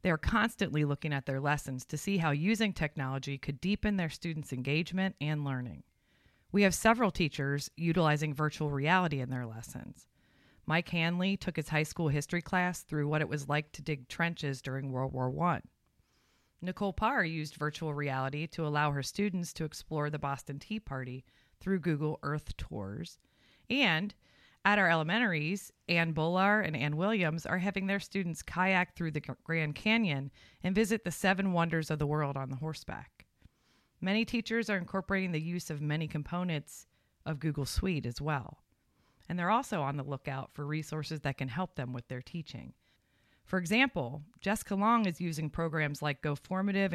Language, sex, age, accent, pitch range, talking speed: English, female, 30-49, American, 140-185 Hz, 175 wpm